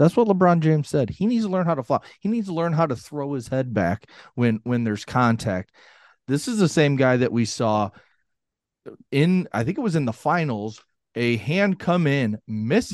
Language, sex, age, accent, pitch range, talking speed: English, male, 30-49, American, 105-135 Hz, 220 wpm